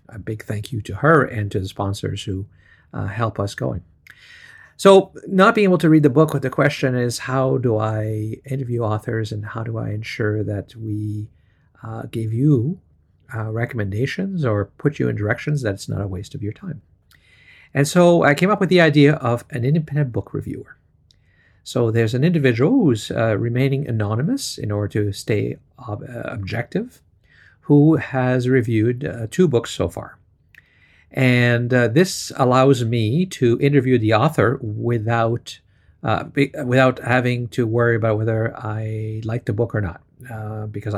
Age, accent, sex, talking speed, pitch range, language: 50-69, American, male, 170 wpm, 105-135 Hz, English